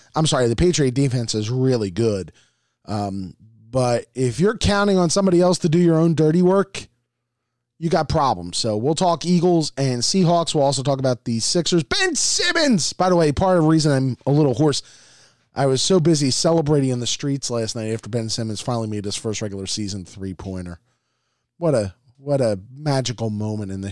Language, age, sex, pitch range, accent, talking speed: English, 20-39, male, 115-170 Hz, American, 195 wpm